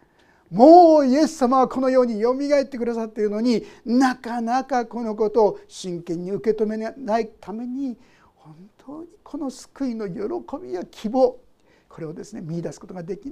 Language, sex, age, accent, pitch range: Japanese, male, 50-69, native, 205-280 Hz